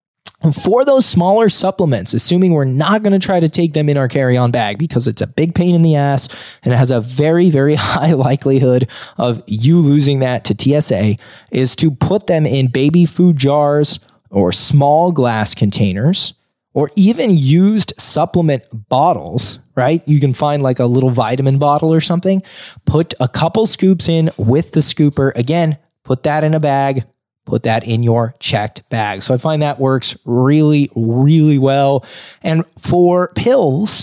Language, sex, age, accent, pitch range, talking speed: English, male, 20-39, American, 125-165 Hz, 175 wpm